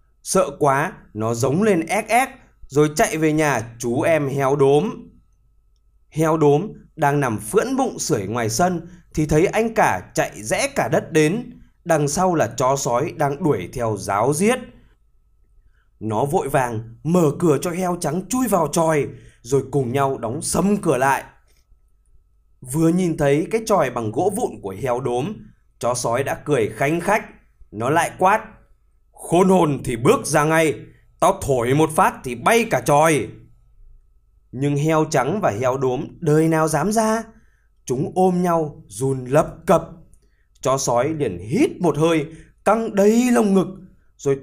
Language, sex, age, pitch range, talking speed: Vietnamese, male, 20-39, 125-180 Hz, 165 wpm